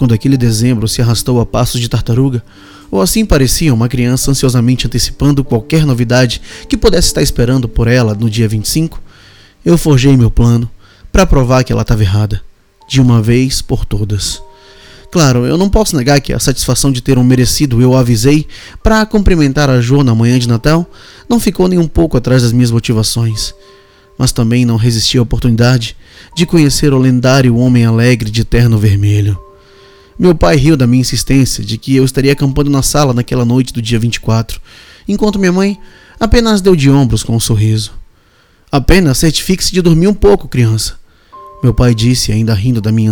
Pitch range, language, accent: 115-140 Hz, Portuguese, Brazilian